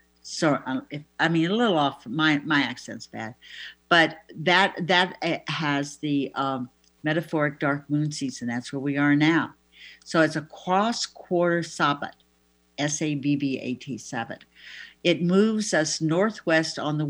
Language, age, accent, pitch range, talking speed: English, 60-79, American, 145-190 Hz, 140 wpm